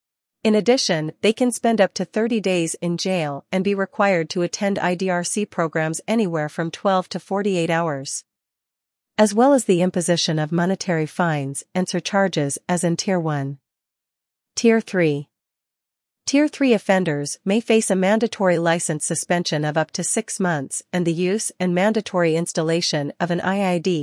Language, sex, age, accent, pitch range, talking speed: English, female, 40-59, American, 165-200 Hz, 155 wpm